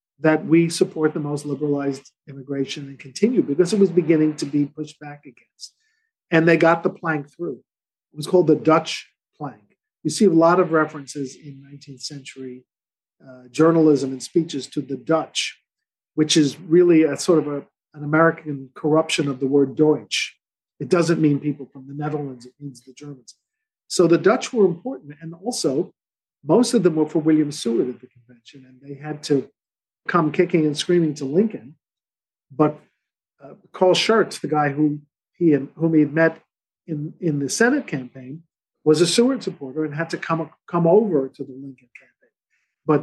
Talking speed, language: 180 wpm, English